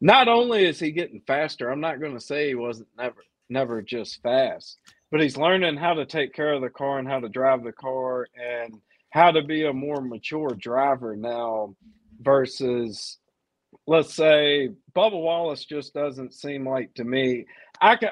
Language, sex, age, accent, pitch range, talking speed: English, male, 40-59, American, 130-170 Hz, 180 wpm